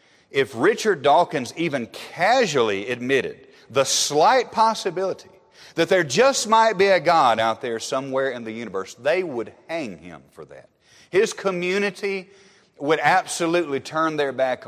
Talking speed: 145 wpm